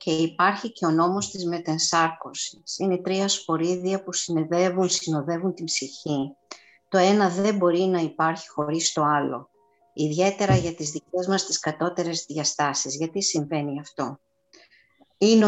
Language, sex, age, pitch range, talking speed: Greek, female, 50-69, 150-185 Hz, 135 wpm